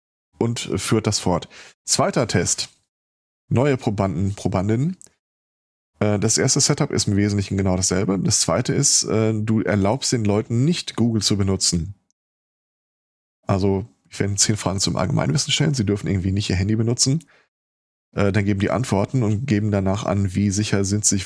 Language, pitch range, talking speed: German, 95-115 Hz, 160 wpm